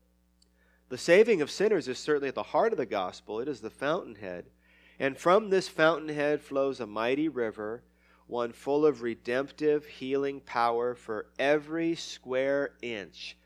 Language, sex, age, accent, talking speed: English, male, 30-49, American, 150 wpm